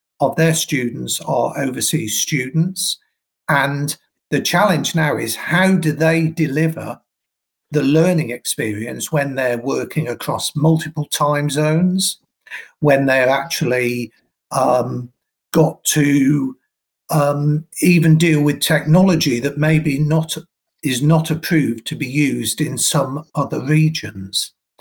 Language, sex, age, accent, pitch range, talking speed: English, male, 50-69, British, 135-160 Hz, 120 wpm